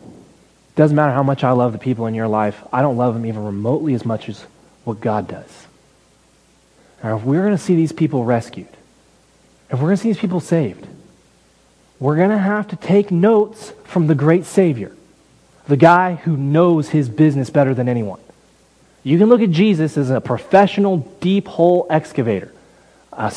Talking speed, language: 185 wpm, English